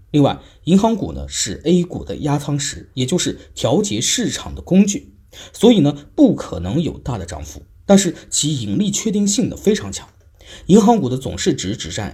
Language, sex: Chinese, male